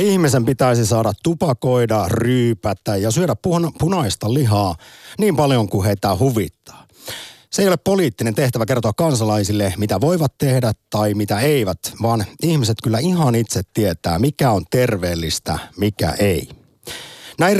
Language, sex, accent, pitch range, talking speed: Finnish, male, native, 100-140 Hz, 135 wpm